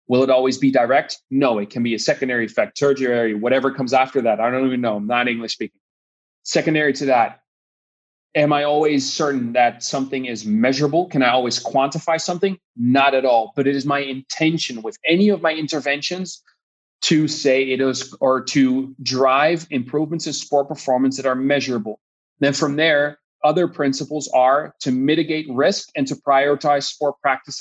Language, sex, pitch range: English, male, 130-150 Hz